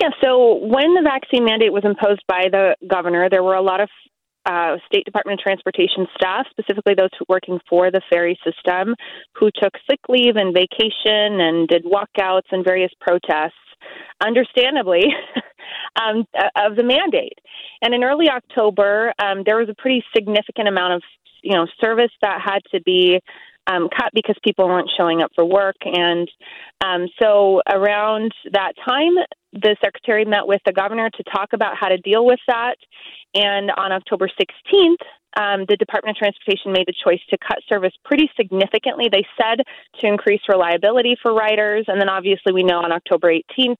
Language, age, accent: English, 30-49, American